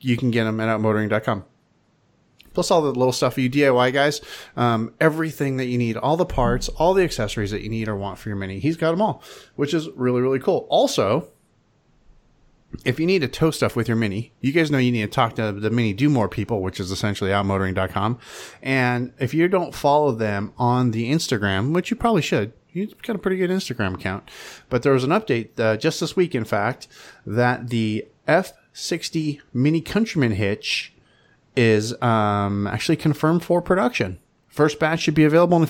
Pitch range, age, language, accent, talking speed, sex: 110-155 Hz, 30-49, English, American, 205 wpm, male